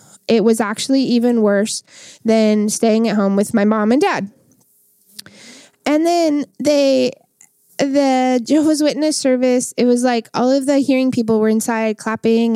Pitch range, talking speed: 210-255 Hz, 155 wpm